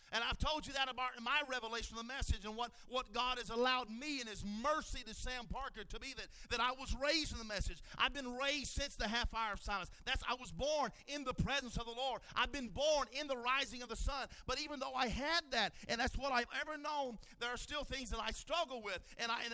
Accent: American